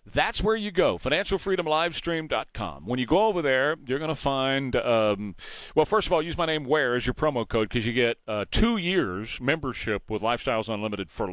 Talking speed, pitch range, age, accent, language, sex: 195 wpm, 120-165 Hz, 40-59, American, English, male